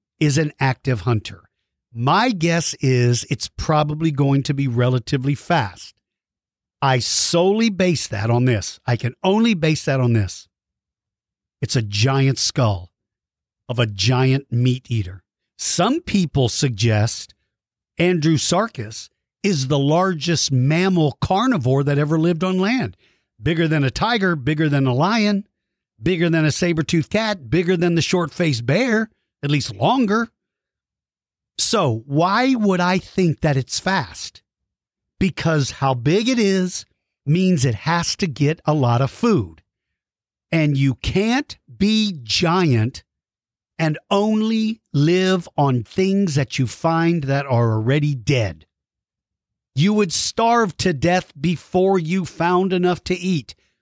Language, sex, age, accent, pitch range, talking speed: English, male, 50-69, American, 120-185 Hz, 135 wpm